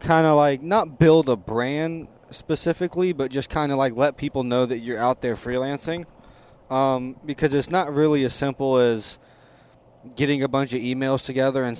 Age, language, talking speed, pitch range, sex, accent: 20-39, English, 185 wpm, 115-135 Hz, male, American